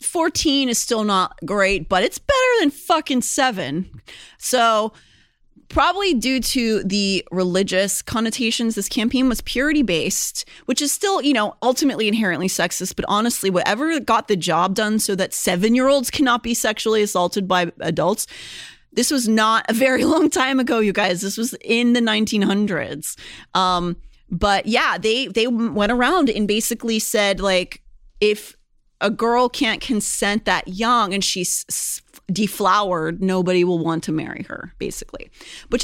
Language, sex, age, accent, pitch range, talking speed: English, female, 30-49, American, 185-240 Hz, 155 wpm